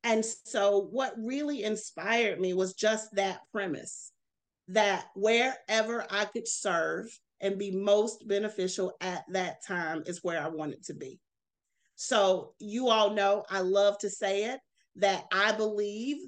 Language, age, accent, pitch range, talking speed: English, 40-59, American, 185-220 Hz, 145 wpm